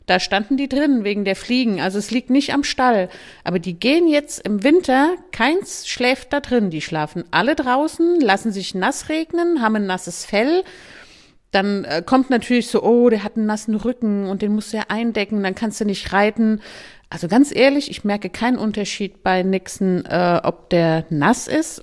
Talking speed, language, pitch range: 190 wpm, German, 195-260 Hz